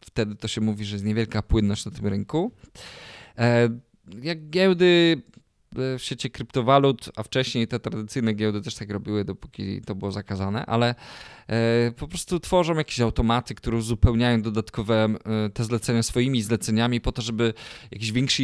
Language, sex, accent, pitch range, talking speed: Polish, male, native, 105-130 Hz, 150 wpm